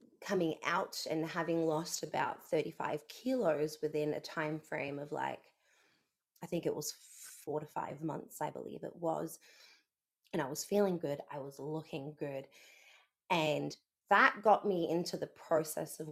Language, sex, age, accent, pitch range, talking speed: English, female, 20-39, Australian, 155-200 Hz, 160 wpm